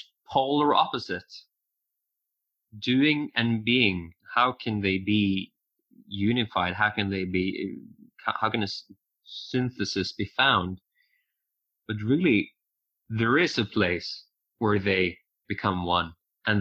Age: 20-39